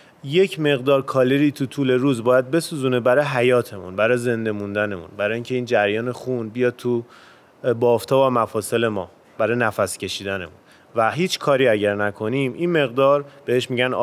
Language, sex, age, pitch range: Persian, male, 30-49, 115-145 Hz